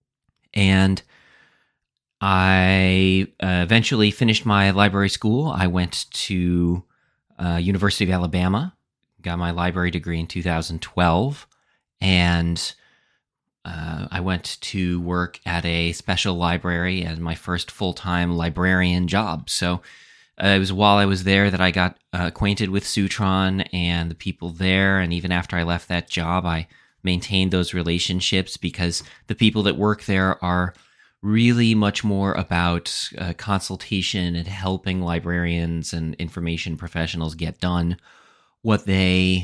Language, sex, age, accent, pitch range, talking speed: English, male, 30-49, American, 85-100 Hz, 135 wpm